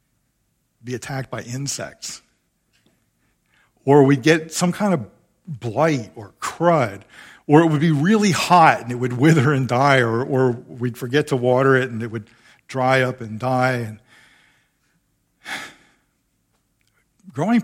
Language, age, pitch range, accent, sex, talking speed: English, 50-69, 125-170 Hz, American, male, 135 wpm